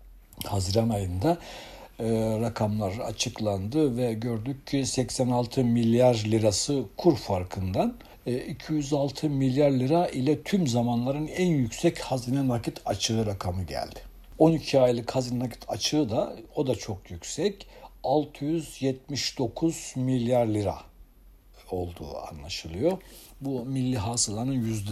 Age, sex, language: 60-79, male, Turkish